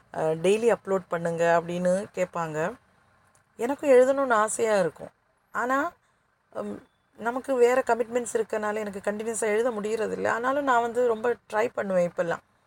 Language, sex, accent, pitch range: Tamil, female, native, 180-235 Hz